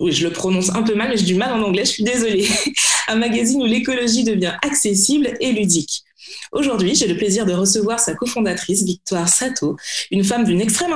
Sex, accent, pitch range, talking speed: female, French, 190-245 Hz, 210 wpm